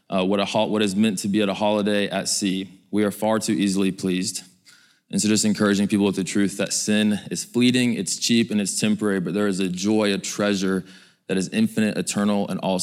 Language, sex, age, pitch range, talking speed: English, male, 20-39, 95-110 Hz, 230 wpm